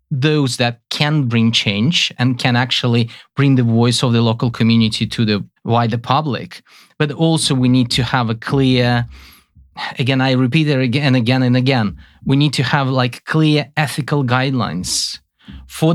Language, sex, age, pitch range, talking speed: Hungarian, male, 30-49, 115-150 Hz, 170 wpm